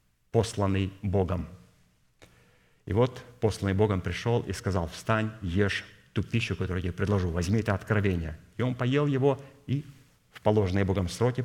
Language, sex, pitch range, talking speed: Russian, male, 100-120 Hz, 150 wpm